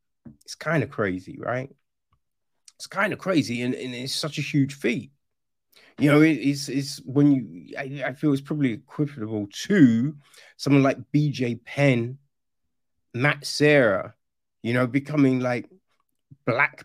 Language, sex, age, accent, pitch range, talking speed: English, male, 30-49, British, 115-145 Hz, 145 wpm